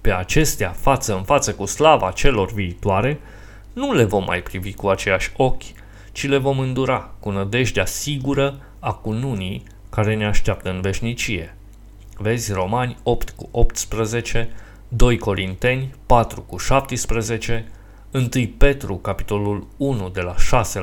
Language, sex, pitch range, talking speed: Romanian, male, 100-125 Hz, 140 wpm